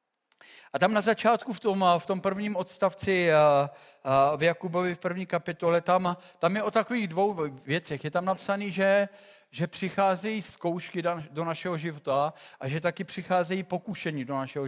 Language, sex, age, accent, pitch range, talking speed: Czech, male, 50-69, native, 160-195 Hz, 160 wpm